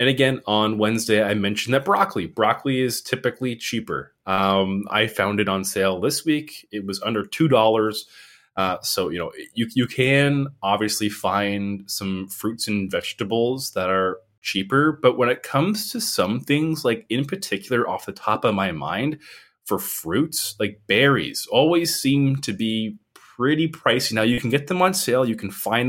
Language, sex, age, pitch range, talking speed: English, male, 20-39, 100-135 Hz, 175 wpm